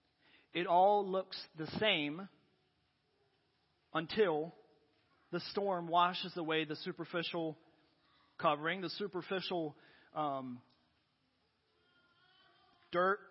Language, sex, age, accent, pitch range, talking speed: English, male, 40-59, American, 160-190 Hz, 75 wpm